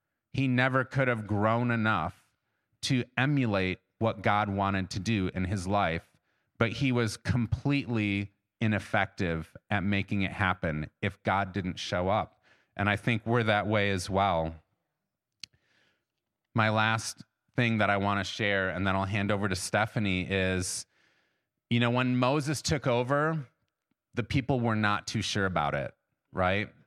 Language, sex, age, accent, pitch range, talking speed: English, male, 30-49, American, 100-125 Hz, 155 wpm